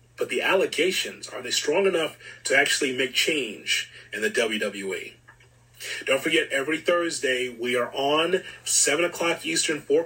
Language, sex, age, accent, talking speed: English, male, 30-49, American, 150 wpm